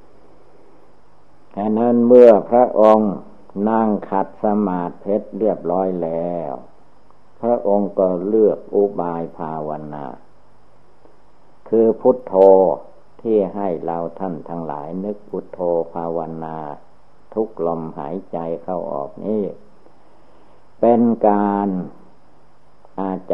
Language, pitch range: Thai, 85-105 Hz